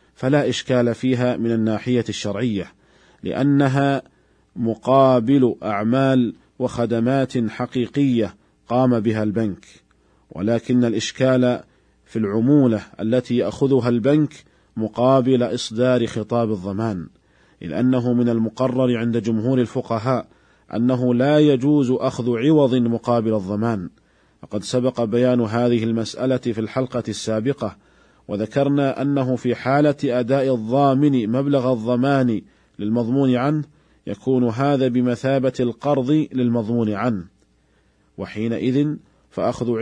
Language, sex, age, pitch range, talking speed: Arabic, male, 40-59, 115-130 Hz, 100 wpm